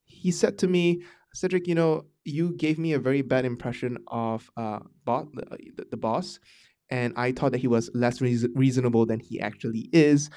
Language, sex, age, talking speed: English, male, 20-39, 190 wpm